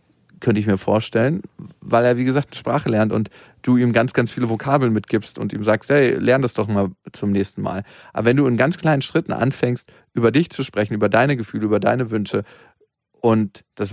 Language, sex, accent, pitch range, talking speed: German, male, German, 105-130 Hz, 210 wpm